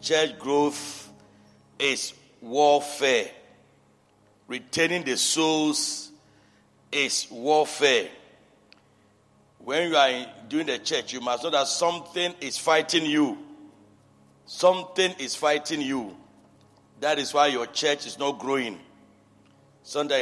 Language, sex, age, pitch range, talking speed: English, male, 60-79, 145-215 Hz, 105 wpm